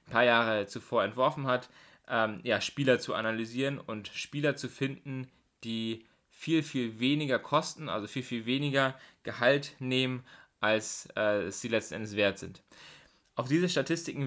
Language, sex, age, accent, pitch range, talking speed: German, male, 20-39, German, 110-135 Hz, 145 wpm